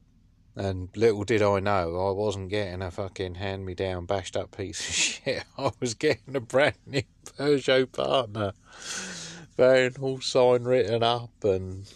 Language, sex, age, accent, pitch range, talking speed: English, male, 30-49, British, 90-110 Hz, 135 wpm